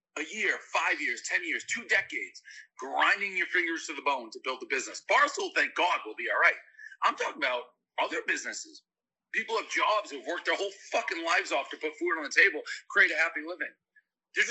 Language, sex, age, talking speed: English, male, 40-59, 210 wpm